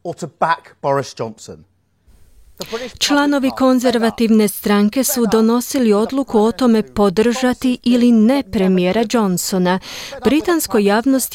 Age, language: 30-49, Croatian